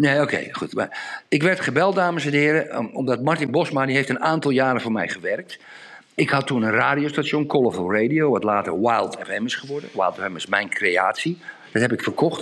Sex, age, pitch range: male, 50-69, 140-185 Hz